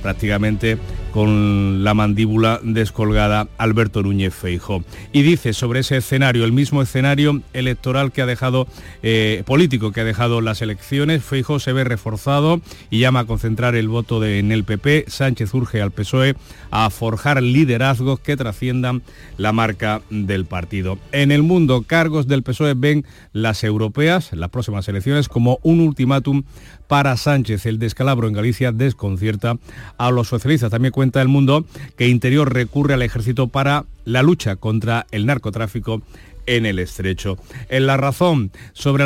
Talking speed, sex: 155 wpm, male